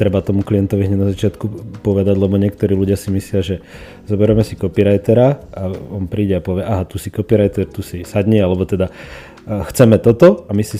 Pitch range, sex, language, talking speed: 95-105 Hz, male, Slovak, 190 wpm